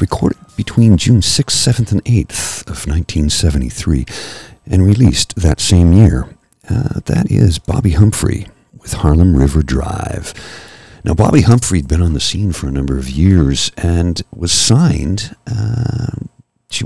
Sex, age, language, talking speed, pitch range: male, 50-69, English, 145 wpm, 80-110 Hz